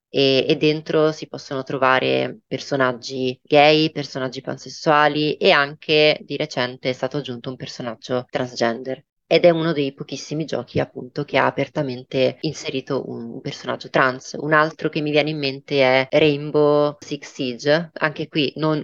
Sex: female